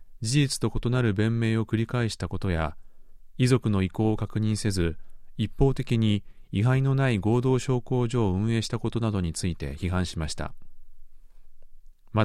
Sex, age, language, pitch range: male, 40-59, Japanese, 90-120 Hz